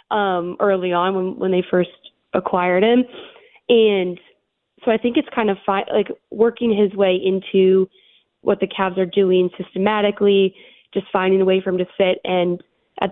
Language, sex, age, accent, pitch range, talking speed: English, female, 20-39, American, 180-205 Hz, 175 wpm